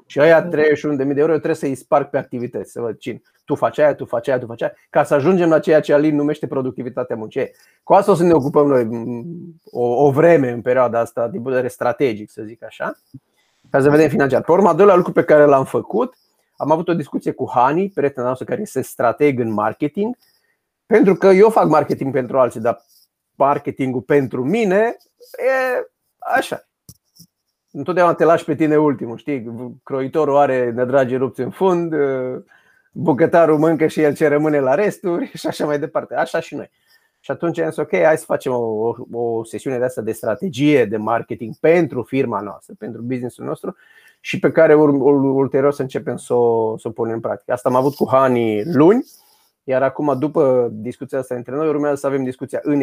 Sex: male